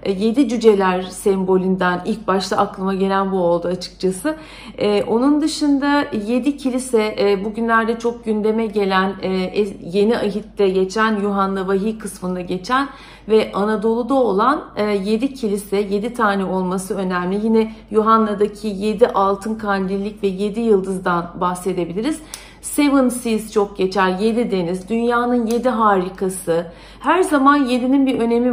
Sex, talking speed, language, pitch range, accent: female, 120 wpm, Turkish, 195-235 Hz, native